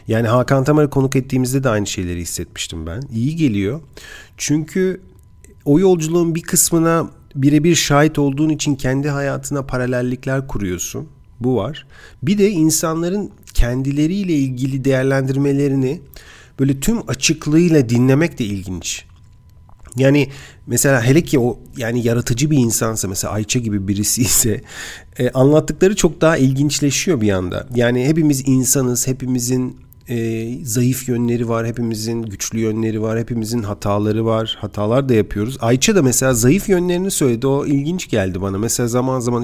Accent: native